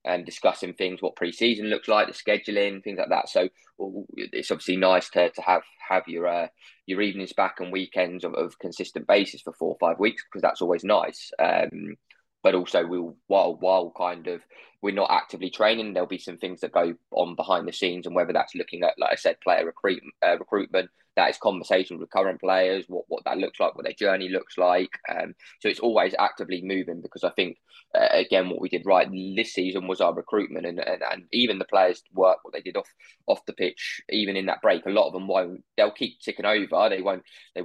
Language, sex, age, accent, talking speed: English, male, 20-39, British, 225 wpm